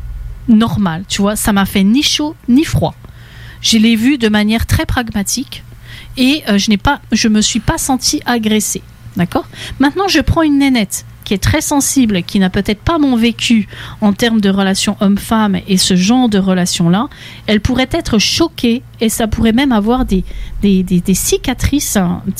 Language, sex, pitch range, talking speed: English, female, 190-250 Hz, 180 wpm